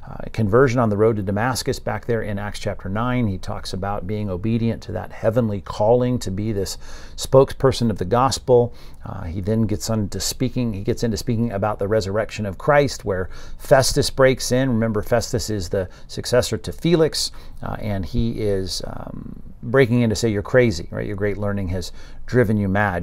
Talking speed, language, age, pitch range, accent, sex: 195 wpm, English, 50-69, 100-125 Hz, American, male